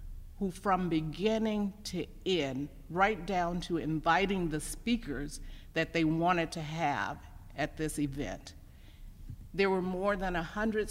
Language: English